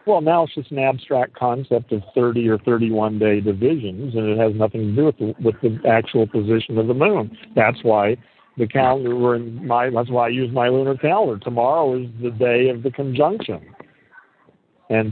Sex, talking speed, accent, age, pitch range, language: male, 200 wpm, American, 50-69, 115-145 Hz, English